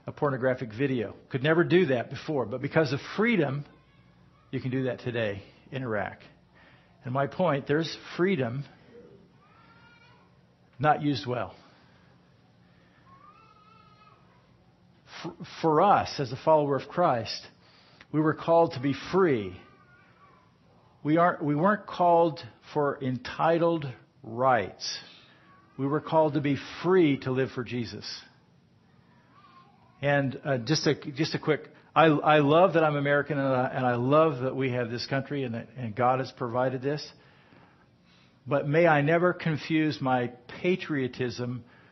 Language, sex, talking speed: English, male, 135 wpm